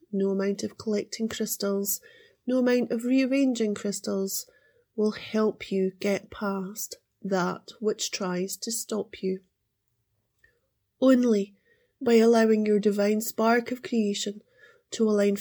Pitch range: 205-240 Hz